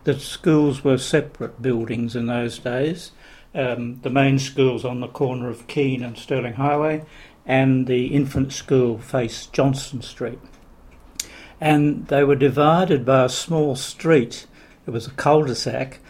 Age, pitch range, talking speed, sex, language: 60-79, 120-140 Hz, 145 wpm, male, English